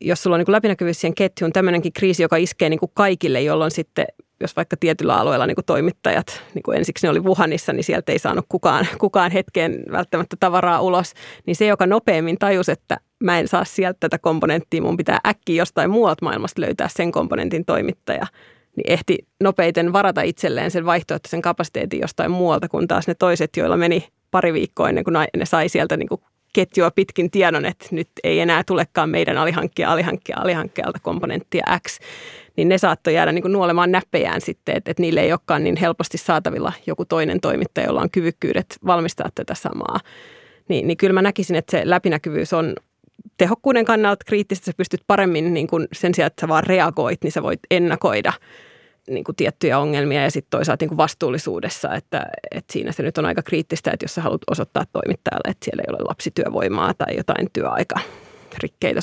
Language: Finnish